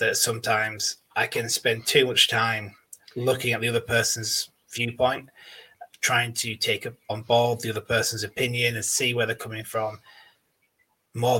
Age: 20-39